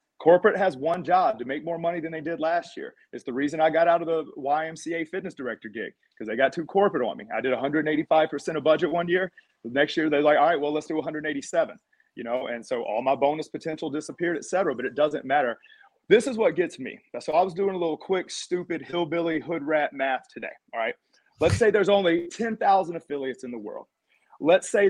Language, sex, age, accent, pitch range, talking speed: English, male, 40-59, American, 145-210 Hz, 230 wpm